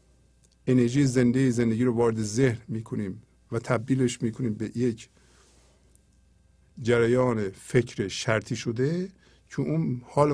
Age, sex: 50-69, male